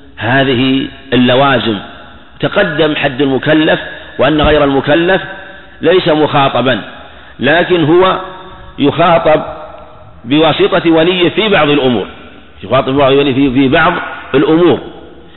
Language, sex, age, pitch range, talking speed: Arabic, male, 50-69, 130-165 Hz, 95 wpm